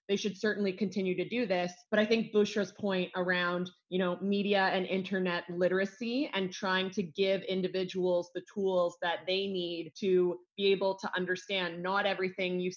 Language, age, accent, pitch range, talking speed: English, 20-39, American, 175-195 Hz, 175 wpm